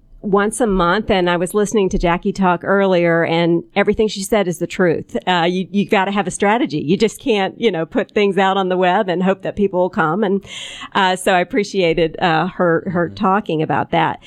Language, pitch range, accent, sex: English, 175-210 Hz, American, female